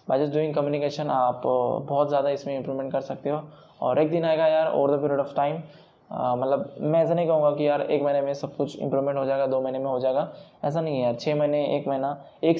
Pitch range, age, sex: 140-160 Hz, 20-39, male